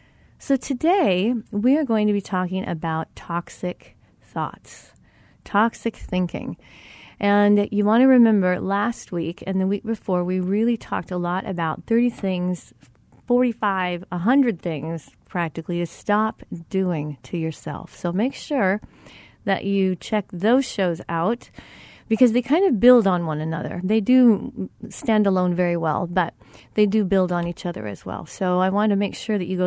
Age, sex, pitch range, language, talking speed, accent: 30-49, female, 175-220 Hz, English, 165 wpm, American